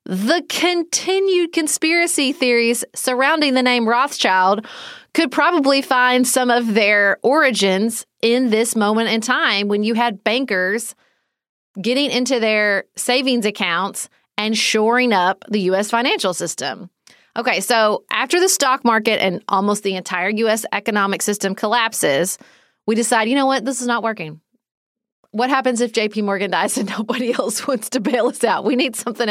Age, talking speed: 30-49, 155 wpm